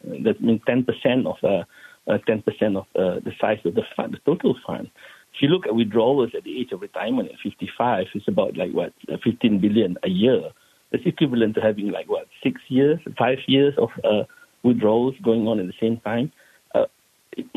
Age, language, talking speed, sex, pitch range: 60-79, English, 200 wpm, male, 115-160 Hz